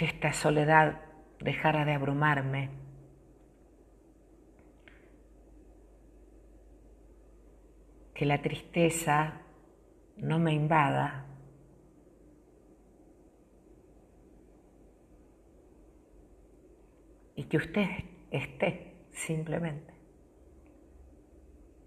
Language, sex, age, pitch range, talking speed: Spanish, female, 50-69, 155-185 Hz, 45 wpm